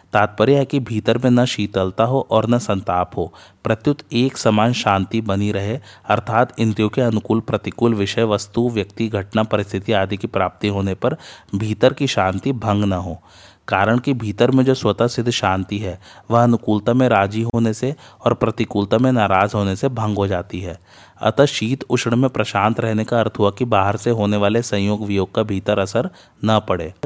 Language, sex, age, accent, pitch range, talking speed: Hindi, male, 30-49, native, 100-120 Hz, 190 wpm